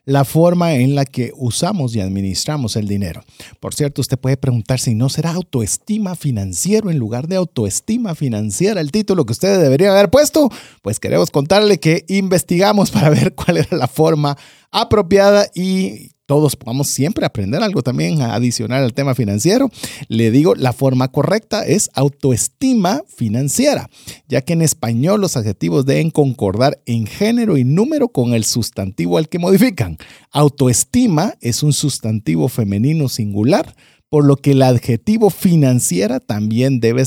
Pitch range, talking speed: 125-175 Hz, 155 wpm